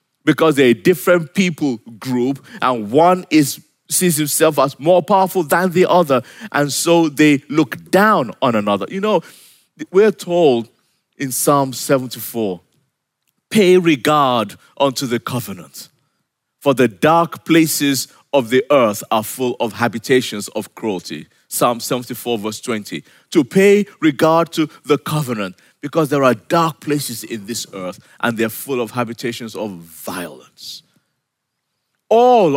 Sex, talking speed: male, 140 wpm